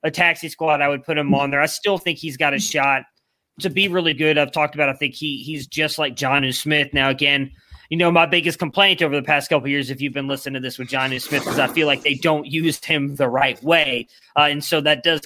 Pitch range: 130-160 Hz